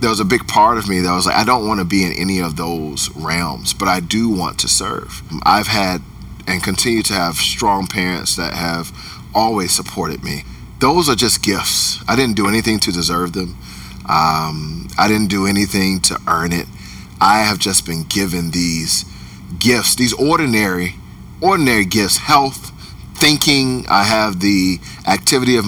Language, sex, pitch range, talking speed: English, male, 90-115 Hz, 180 wpm